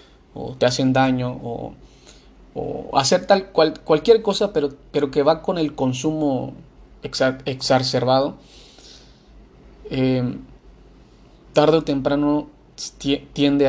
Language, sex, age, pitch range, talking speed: Spanish, male, 30-49, 125-145 Hz, 110 wpm